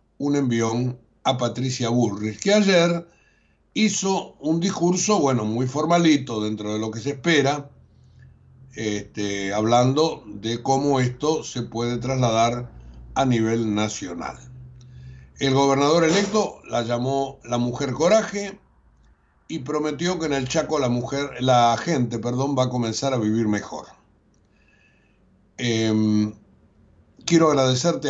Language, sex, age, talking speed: Spanish, male, 60-79, 125 wpm